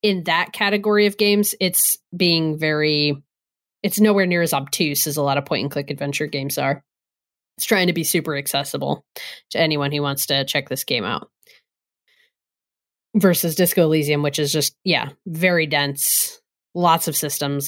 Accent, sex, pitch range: American, female, 145-185 Hz